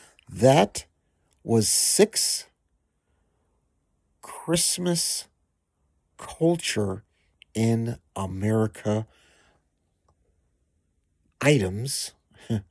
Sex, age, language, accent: male, 50-69, English, American